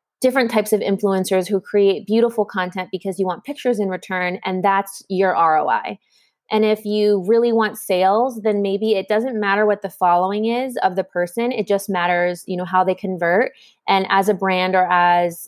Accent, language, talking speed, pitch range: American, English, 195 wpm, 180-210 Hz